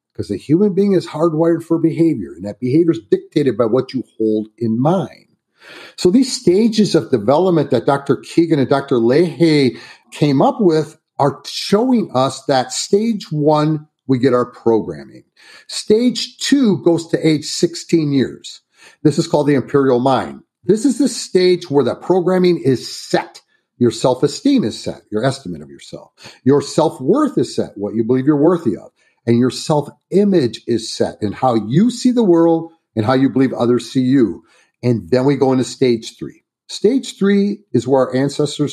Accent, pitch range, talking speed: American, 125-170 Hz, 175 wpm